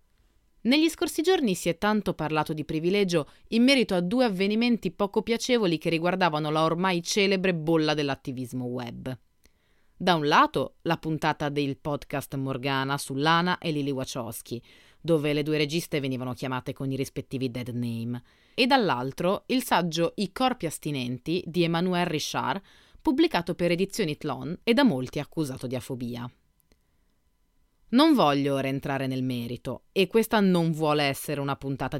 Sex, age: female, 30-49